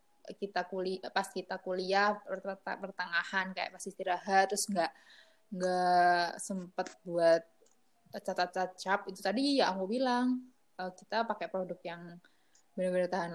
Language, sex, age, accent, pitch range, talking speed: Indonesian, female, 20-39, native, 185-235 Hz, 125 wpm